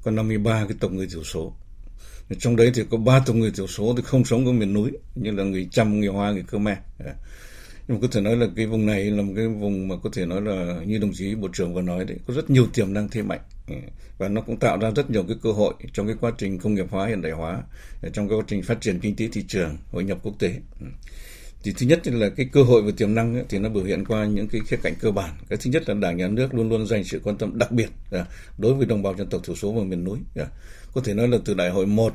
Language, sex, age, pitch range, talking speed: Vietnamese, male, 60-79, 100-120 Hz, 285 wpm